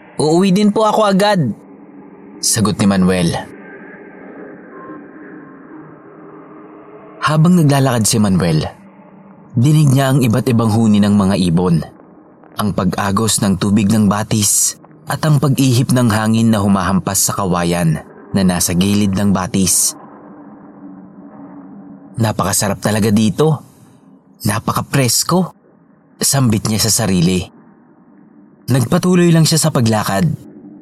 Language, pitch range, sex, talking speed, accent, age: English, 100-140 Hz, male, 105 wpm, Filipino, 30-49